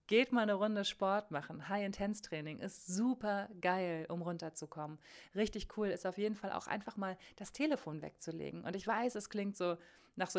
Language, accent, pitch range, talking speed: German, German, 170-210 Hz, 185 wpm